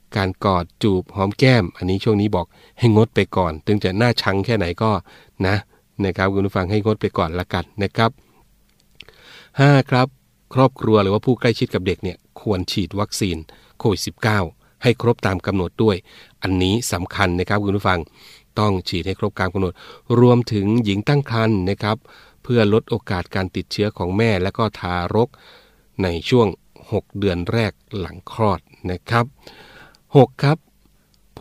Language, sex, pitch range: Thai, male, 90-115 Hz